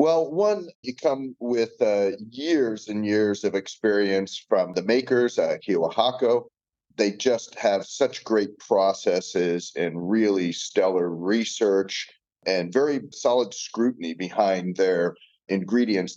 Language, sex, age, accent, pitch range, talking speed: English, male, 40-59, American, 90-115 Hz, 125 wpm